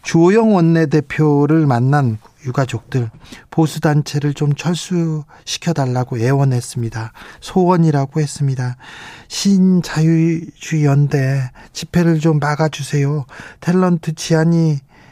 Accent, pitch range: native, 130-155 Hz